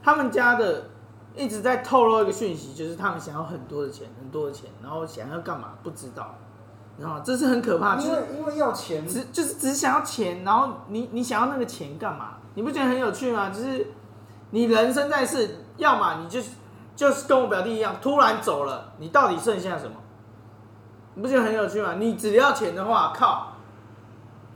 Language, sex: Chinese, male